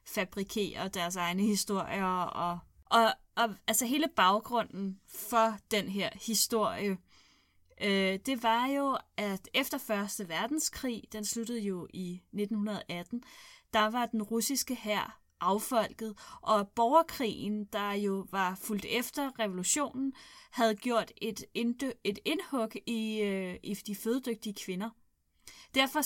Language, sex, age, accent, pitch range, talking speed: Danish, female, 20-39, native, 195-250 Hz, 125 wpm